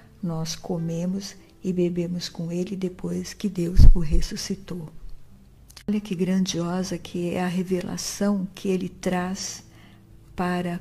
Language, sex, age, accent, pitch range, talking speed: Portuguese, female, 60-79, Brazilian, 165-195 Hz, 120 wpm